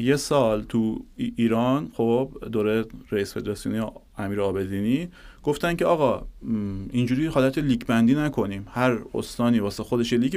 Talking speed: 140 wpm